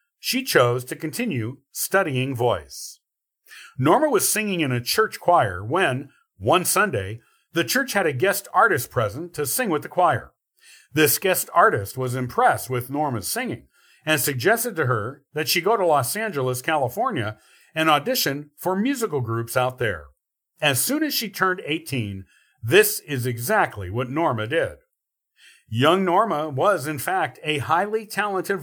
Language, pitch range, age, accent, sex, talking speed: English, 125-195 Hz, 50-69, American, male, 155 wpm